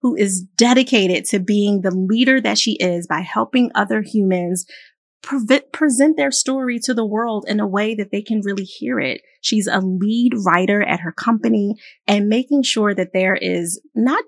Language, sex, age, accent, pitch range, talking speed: English, female, 30-49, American, 185-265 Hz, 185 wpm